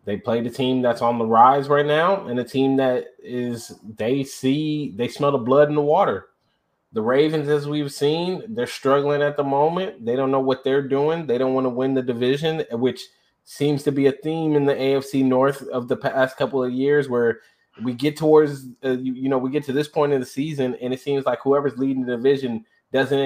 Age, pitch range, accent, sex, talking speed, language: 20-39, 130-180 Hz, American, male, 225 wpm, English